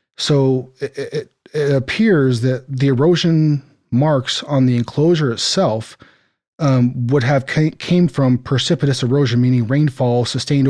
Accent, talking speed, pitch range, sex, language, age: American, 135 wpm, 120-145 Hz, male, English, 30-49